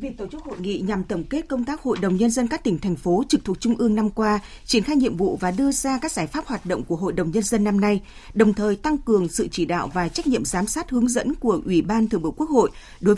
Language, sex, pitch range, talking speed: Vietnamese, female, 185-245 Hz, 295 wpm